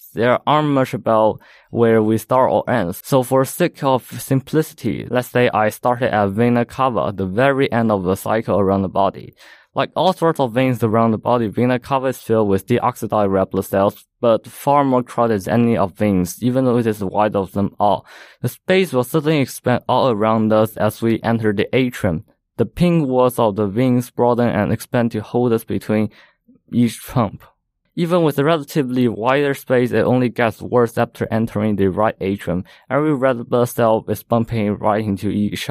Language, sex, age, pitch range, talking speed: English, male, 20-39, 105-125 Hz, 195 wpm